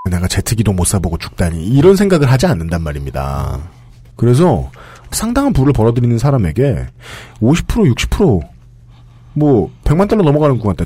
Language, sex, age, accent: Korean, male, 40-59, native